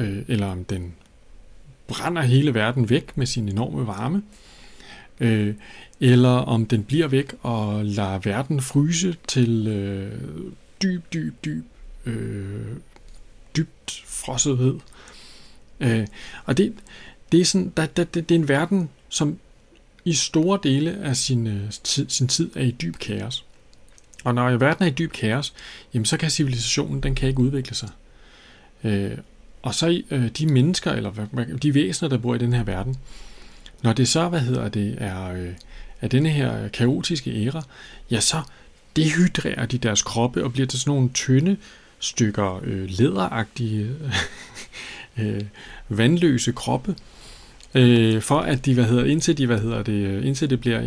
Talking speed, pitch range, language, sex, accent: 140 wpm, 110-145 Hz, Danish, male, native